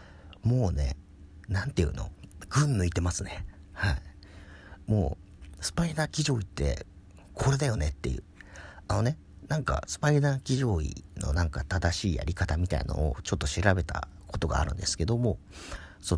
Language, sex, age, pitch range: Japanese, male, 50-69, 80-120 Hz